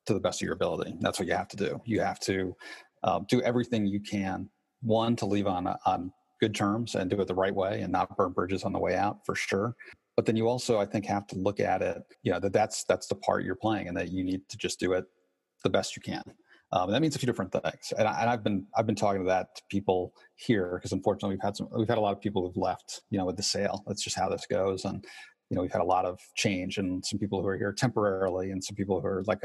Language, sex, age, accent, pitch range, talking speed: English, male, 30-49, American, 95-110 Hz, 285 wpm